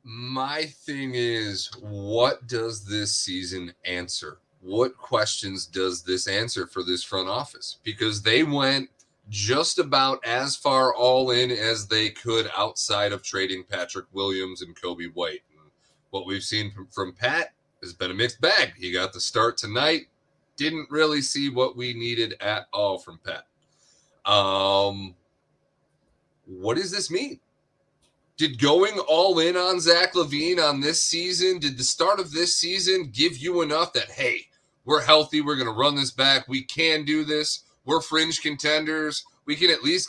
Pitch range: 120-165 Hz